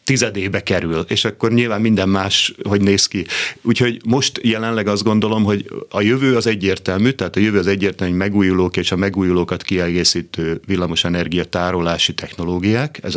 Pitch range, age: 90-115 Hz, 30-49